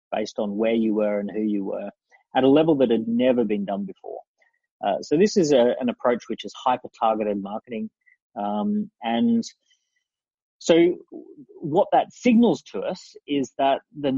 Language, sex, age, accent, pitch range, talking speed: English, male, 30-49, Australian, 105-135 Hz, 165 wpm